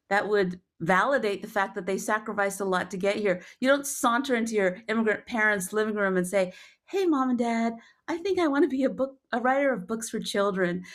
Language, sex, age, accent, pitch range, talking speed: English, female, 50-69, American, 185-235 Hz, 230 wpm